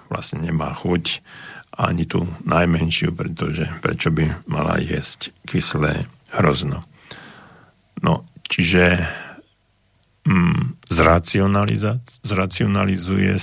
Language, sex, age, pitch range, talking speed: Slovak, male, 50-69, 85-95 Hz, 75 wpm